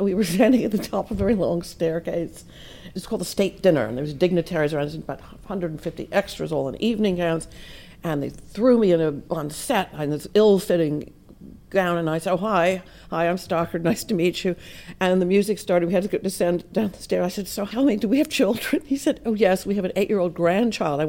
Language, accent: English, American